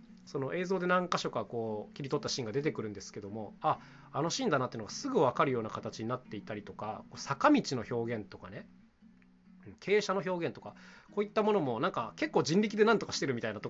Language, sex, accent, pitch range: Japanese, male, native, 115-195 Hz